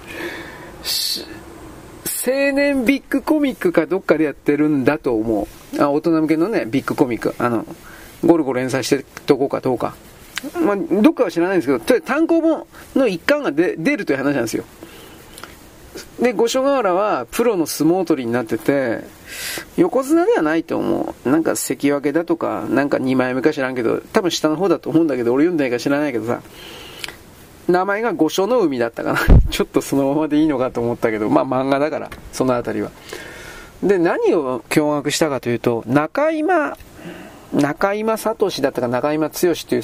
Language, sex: Japanese, male